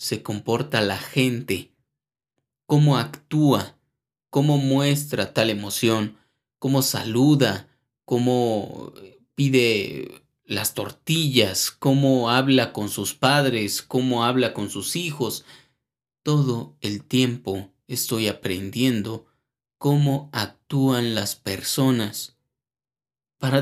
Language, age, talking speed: Spanish, 30-49, 90 wpm